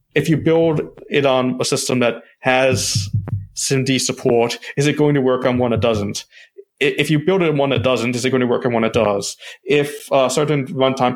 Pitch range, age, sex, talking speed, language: 115-135 Hz, 20-39, male, 220 wpm, English